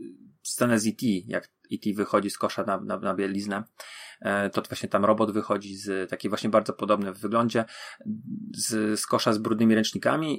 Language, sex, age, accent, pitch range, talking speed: Polish, male, 30-49, native, 110-125 Hz, 175 wpm